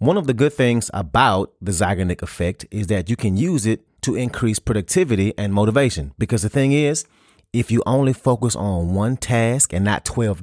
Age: 30-49